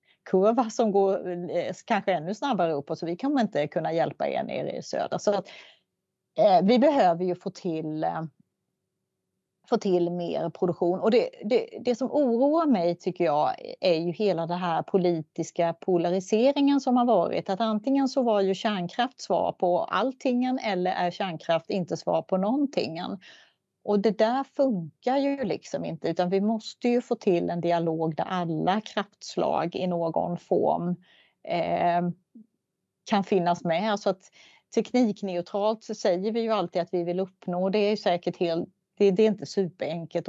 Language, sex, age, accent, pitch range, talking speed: Swedish, female, 30-49, native, 175-220 Hz, 170 wpm